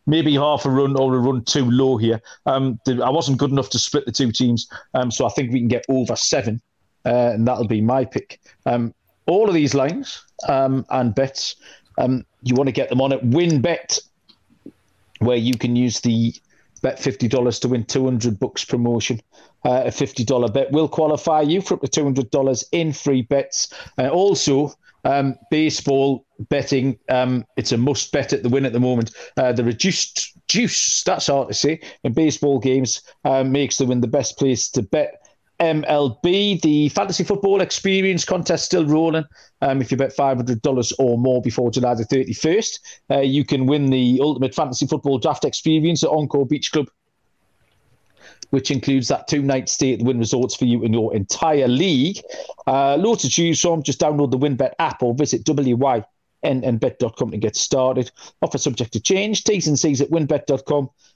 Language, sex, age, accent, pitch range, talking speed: English, male, 40-59, British, 125-150 Hz, 185 wpm